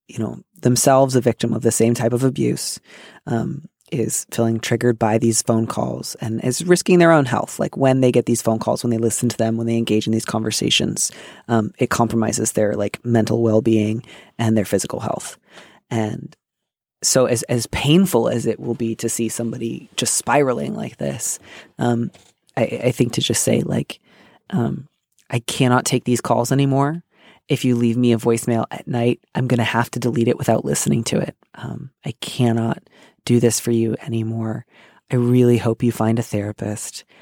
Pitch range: 115-125 Hz